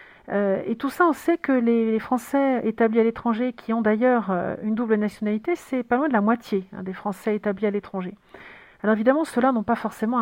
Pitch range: 205-240 Hz